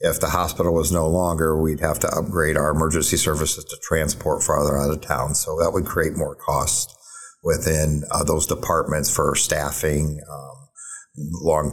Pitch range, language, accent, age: 75-105 Hz, English, American, 50-69